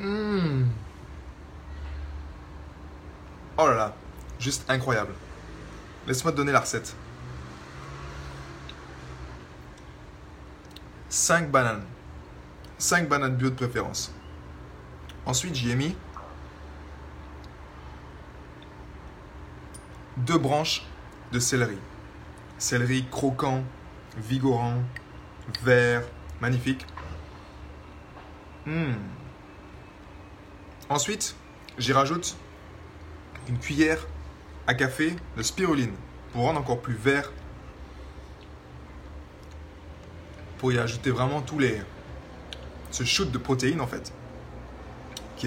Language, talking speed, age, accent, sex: French, 80 wpm, 20-39, French, male